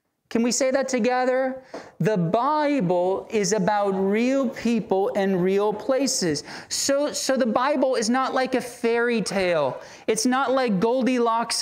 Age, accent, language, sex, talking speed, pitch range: 30-49, American, English, male, 145 wpm, 210-255 Hz